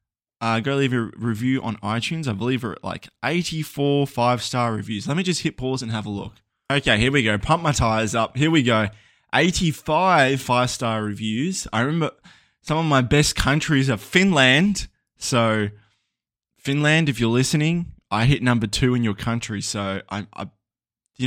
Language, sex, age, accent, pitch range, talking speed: English, male, 20-39, Australian, 110-140 Hz, 180 wpm